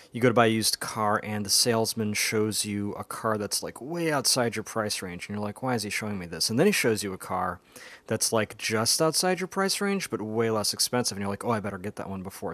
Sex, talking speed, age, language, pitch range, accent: male, 280 wpm, 30-49, English, 105-125 Hz, American